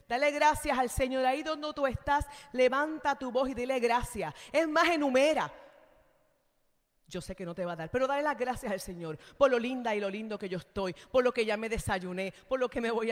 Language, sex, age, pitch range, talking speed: Spanish, female, 40-59, 190-260 Hz, 235 wpm